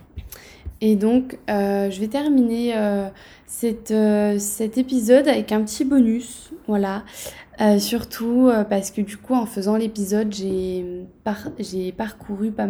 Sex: female